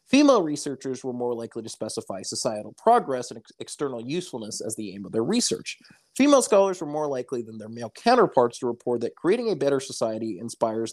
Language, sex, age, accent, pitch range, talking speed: English, male, 30-49, American, 110-155 Hz, 200 wpm